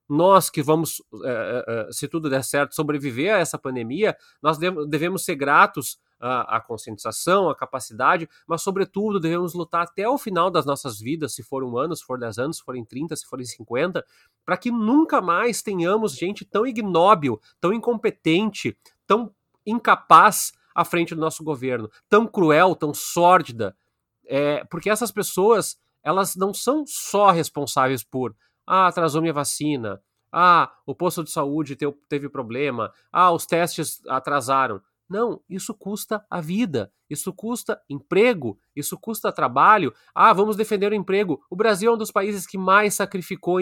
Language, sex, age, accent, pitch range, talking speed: Portuguese, male, 30-49, Brazilian, 145-200 Hz, 155 wpm